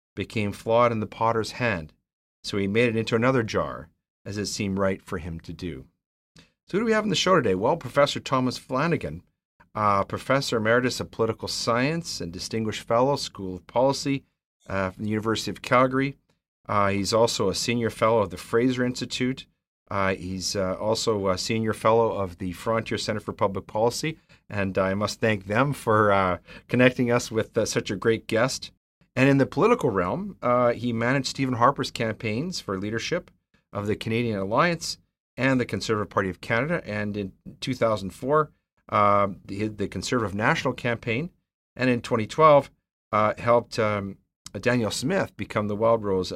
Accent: American